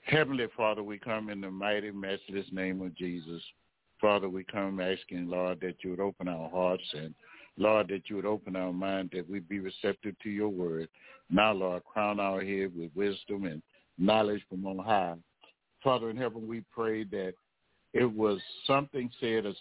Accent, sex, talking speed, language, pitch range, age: American, male, 185 wpm, English, 95-110 Hz, 60-79